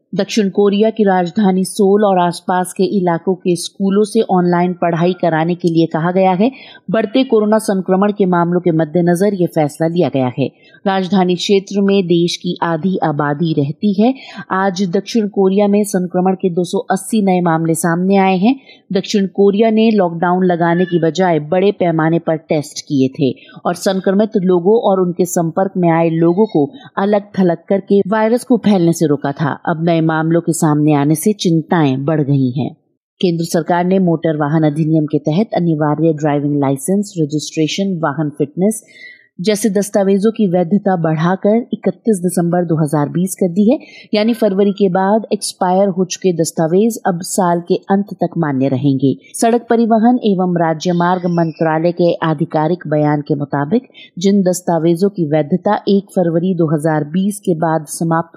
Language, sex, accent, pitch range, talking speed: Hindi, female, native, 165-205 Hz, 160 wpm